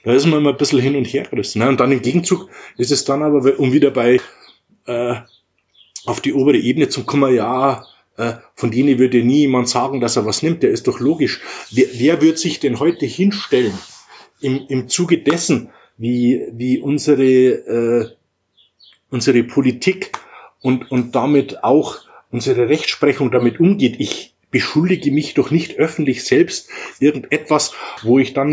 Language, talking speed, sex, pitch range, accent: German, 170 wpm, male, 125-155 Hz, German